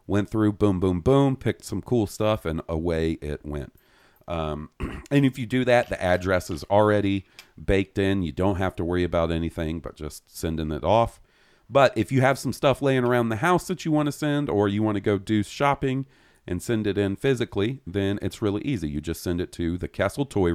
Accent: American